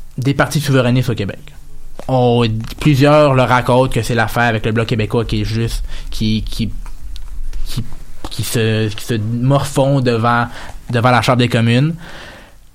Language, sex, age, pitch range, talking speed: French, male, 20-39, 110-145 Hz, 155 wpm